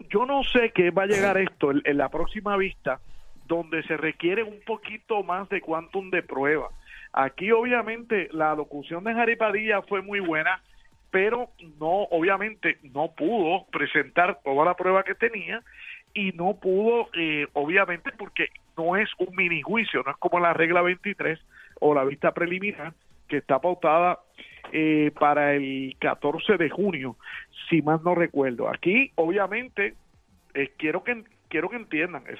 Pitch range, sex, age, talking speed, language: 160-210 Hz, male, 50-69, 155 wpm, Spanish